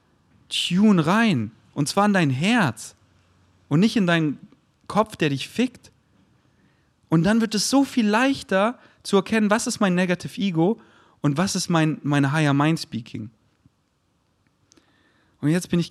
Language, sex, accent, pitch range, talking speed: German, male, German, 115-175 Hz, 155 wpm